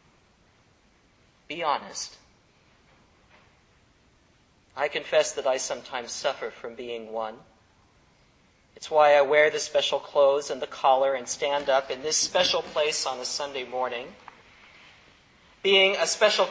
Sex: male